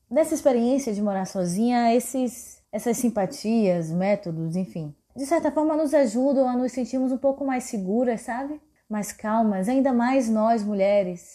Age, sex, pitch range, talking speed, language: 20-39, female, 195-255 Hz, 150 wpm, Portuguese